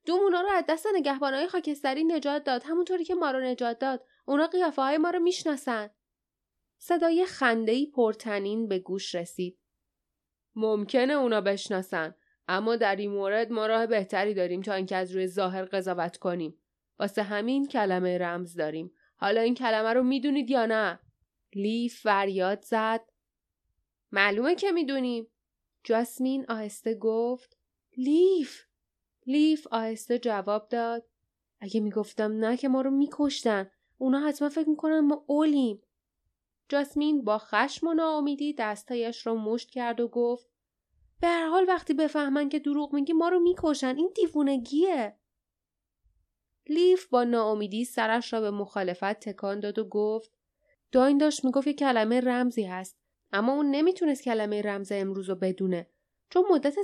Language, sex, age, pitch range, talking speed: Persian, female, 10-29, 205-290 Hz, 140 wpm